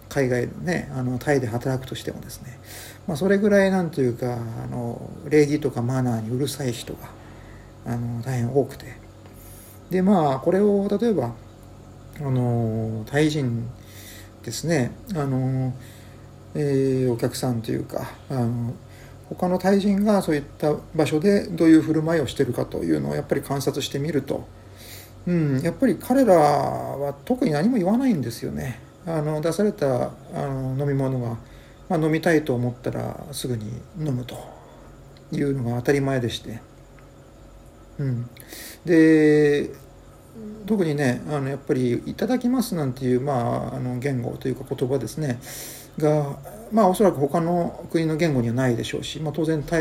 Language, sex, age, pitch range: Japanese, male, 50-69, 120-155 Hz